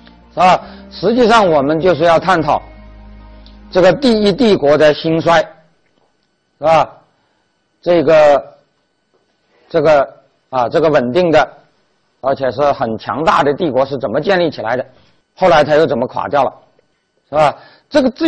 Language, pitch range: Chinese, 130-180 Hz